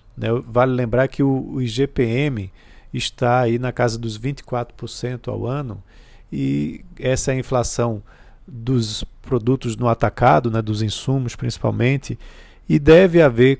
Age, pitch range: 40-59, 110-130 Hz